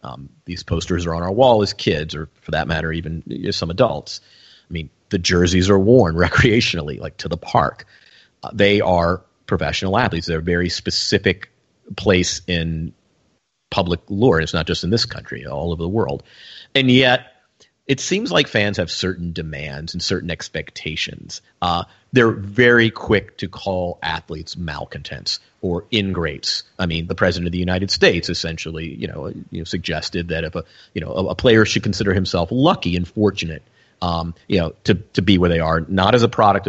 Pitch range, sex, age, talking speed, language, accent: 85-110 Hz, male, 40-59, 185 wpm, English, American